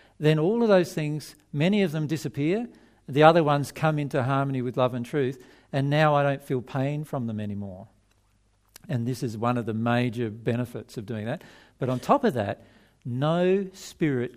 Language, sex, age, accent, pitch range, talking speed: English, male, 50-69, Australian, 120-160 Hz, 190 wpm